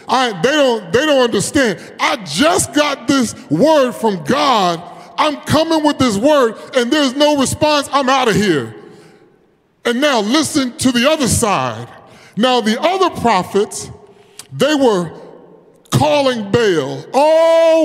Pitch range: 220-290 Hz